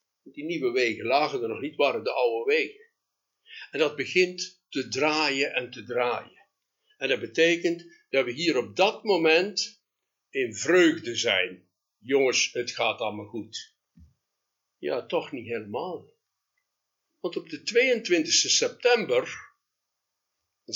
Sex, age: male, 60-79